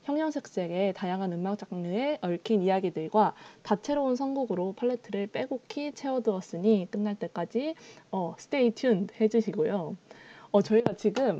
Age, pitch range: 20-39, 190-240 Hz